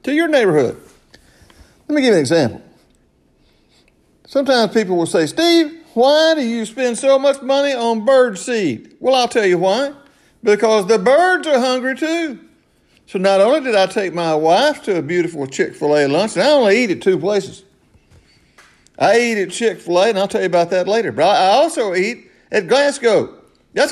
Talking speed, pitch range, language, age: 185 wpm, 155-245 Hz, English, 50-69